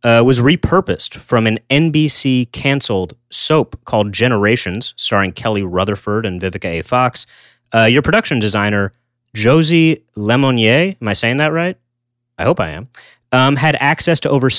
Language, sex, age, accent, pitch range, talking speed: English, male, 30-49, American, 105-130 Hz, 145 wpm